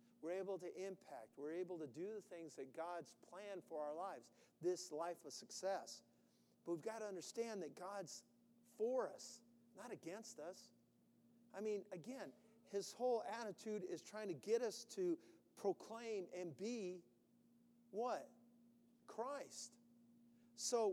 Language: English